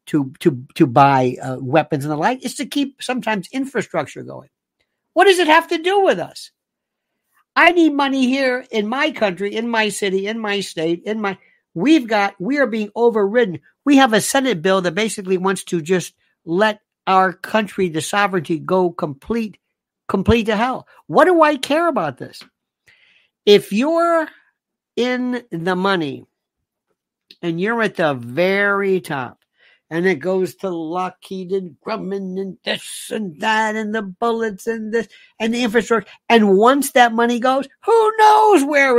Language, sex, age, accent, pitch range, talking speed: English, male, 60-79, American, 185-265 Hz, 165 wpm